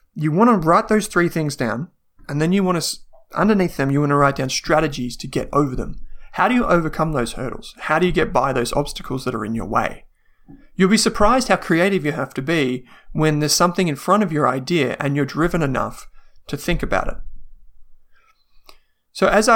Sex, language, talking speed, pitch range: male, English, 210 wpm, 140-185 Hz